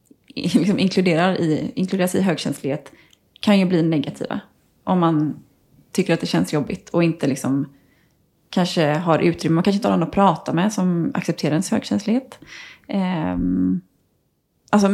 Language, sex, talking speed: Swedish, female, 135 wpm